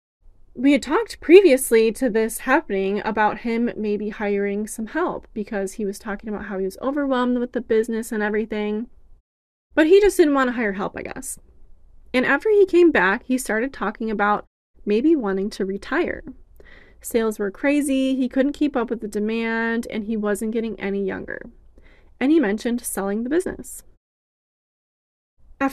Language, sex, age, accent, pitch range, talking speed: English, female, 20-39, American, 210-280 Hz, 170 wpm